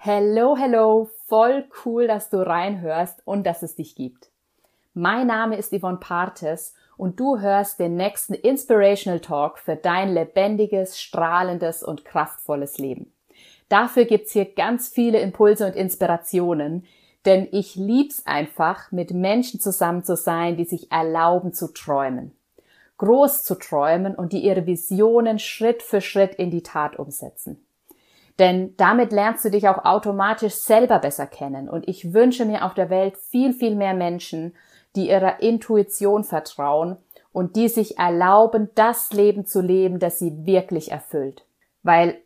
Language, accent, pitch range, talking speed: German, German, 170-215 Hz, 150 wpm